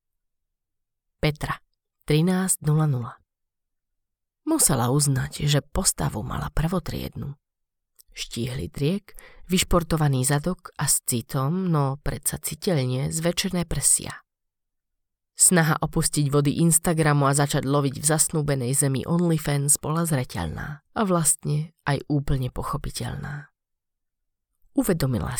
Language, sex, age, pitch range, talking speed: Slovak, female, 30-49, 130-160 Hz, 90 wpm